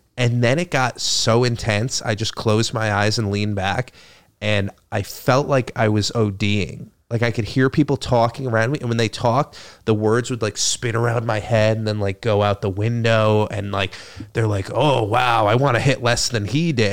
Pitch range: 105-130 Hz